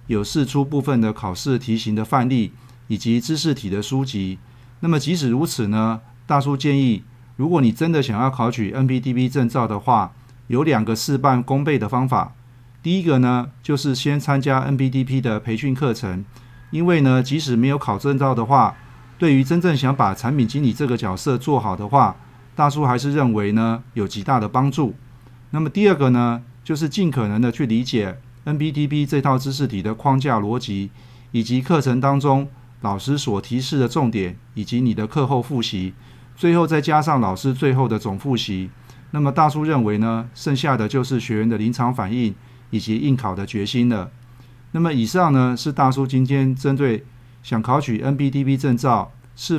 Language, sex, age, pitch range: Chinese, male, 40-59, 115-140 Hz